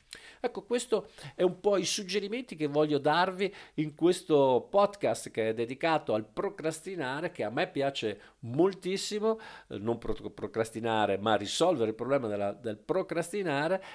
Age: 50-69